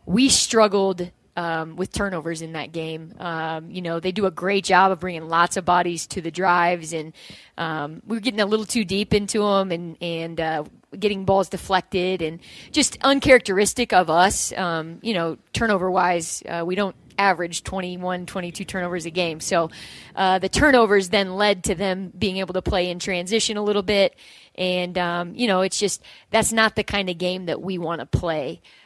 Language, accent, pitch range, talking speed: English, American, 175-205 Hz, 190 wpm